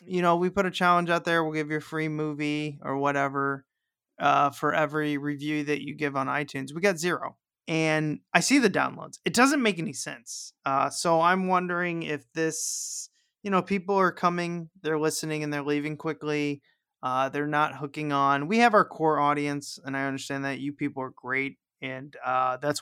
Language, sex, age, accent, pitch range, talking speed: English, male, 20-39, American, 145-175 Hz, 200 wpm